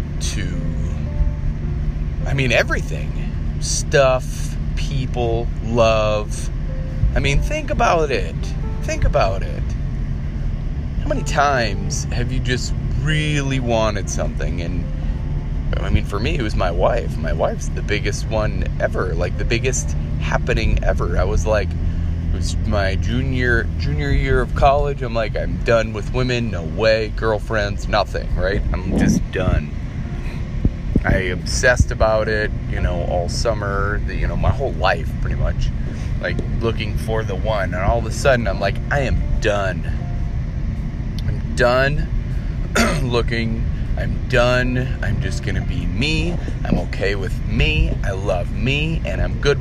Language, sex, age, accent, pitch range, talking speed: English, male, 30-49, American, 75-115 Hz, 145 wpm